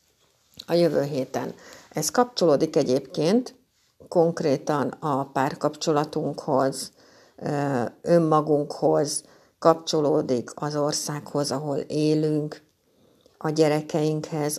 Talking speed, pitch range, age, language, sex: 70 wpm, 150-185 Hz, 60-79, Hungarian, female